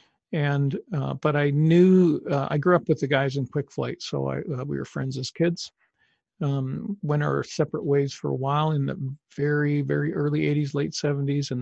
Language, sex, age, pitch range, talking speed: English, male, 40-59, 140-160 Hz, 200 wpm